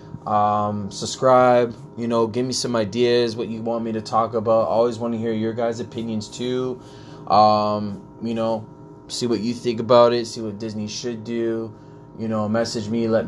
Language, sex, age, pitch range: English, male, 20-39, 105-120 Hz